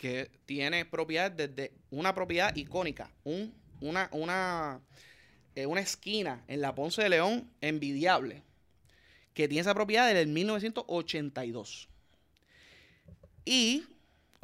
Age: 30-49